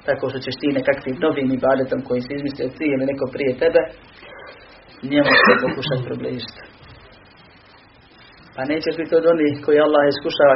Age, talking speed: 30-49, 150 wpm